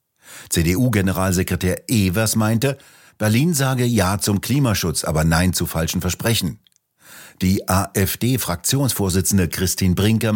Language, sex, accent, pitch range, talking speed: German, male, German, 85-110 Hz, 100 wpm